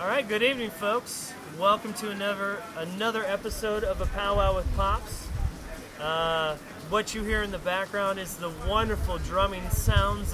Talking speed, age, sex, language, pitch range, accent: 165 wpm, 20-39, male, English, 145-200 Hz, American